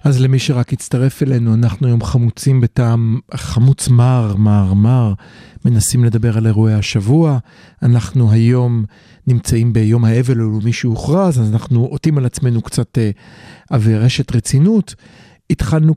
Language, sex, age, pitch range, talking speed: Hebrew, male, 40-59, 115-155 Hz, 130 wpm